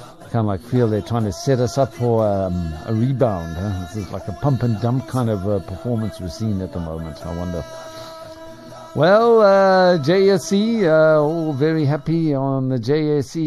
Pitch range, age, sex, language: 100-140 Hz, 50-69, male, English